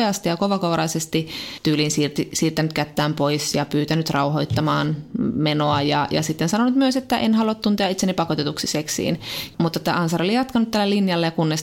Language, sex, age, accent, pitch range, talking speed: Finnish, female, 20-39, native, 150-175 Hz, 165 wpm